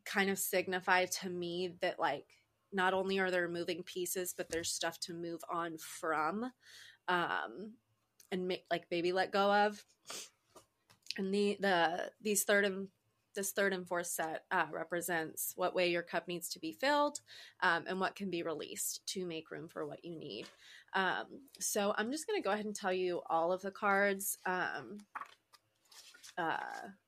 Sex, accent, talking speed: female, American, 175 wpm